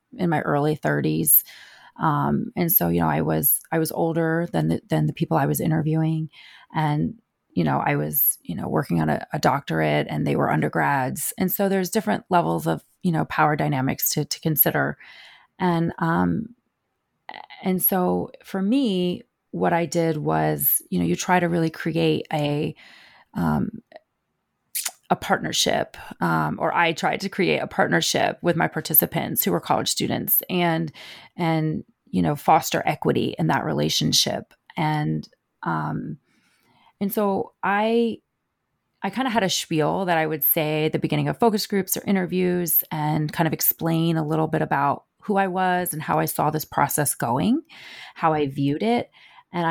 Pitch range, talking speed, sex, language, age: 150-185 Hz, 175 wpm, female, English, 30-49